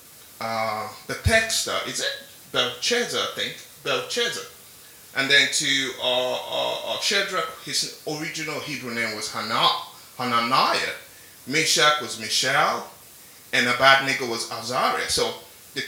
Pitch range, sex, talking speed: 115-150 Hz, male, 120 wpm